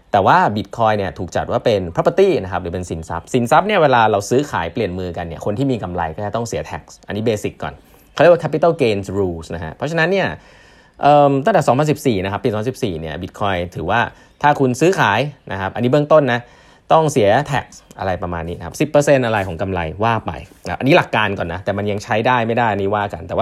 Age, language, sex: 20-39, Thai, male